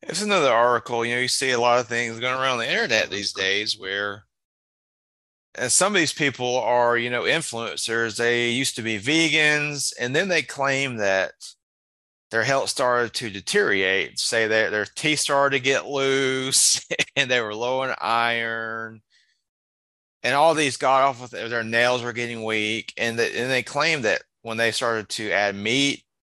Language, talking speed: English, 180 wpm